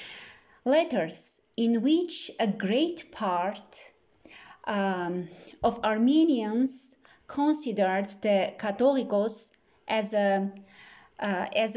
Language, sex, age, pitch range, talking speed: English, female, 30-49, 210-290 Hz, 65 wpm